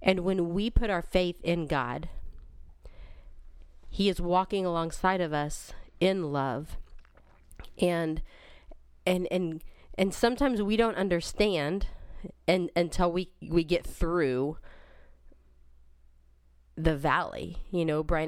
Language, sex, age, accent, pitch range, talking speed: English, female, 30-49, American, 145-185 Hz, 115 wpm